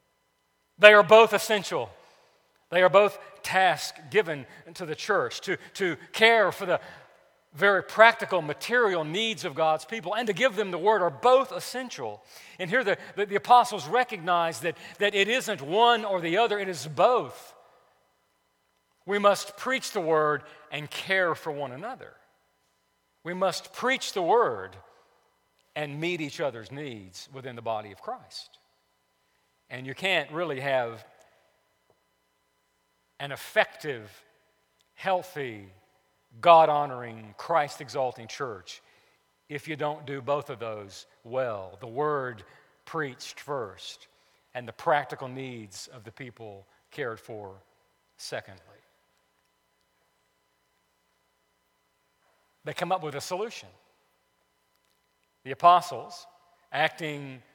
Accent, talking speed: American, 125 wpm